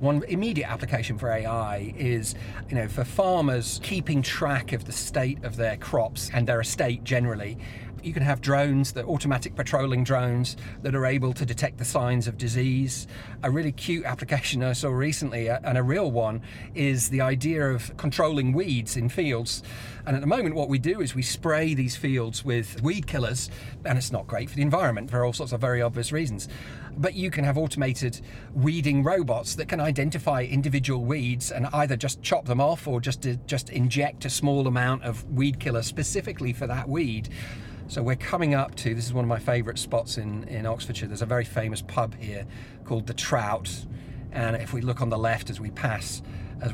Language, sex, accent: English, male, British